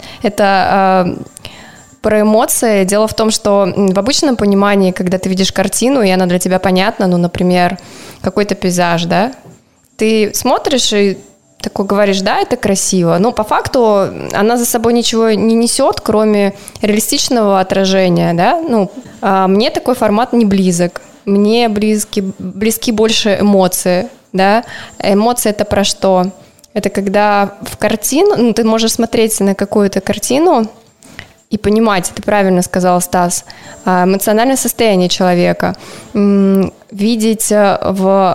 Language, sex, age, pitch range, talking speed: Russian, female, 20-39, 190-225 Hz, 135 wpm